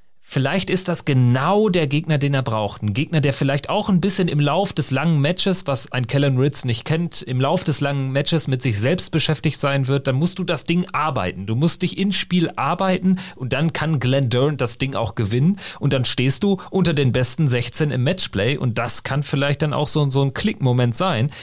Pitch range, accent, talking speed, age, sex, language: 125-160 Hz, German, 225 wpm, 40-59, male, German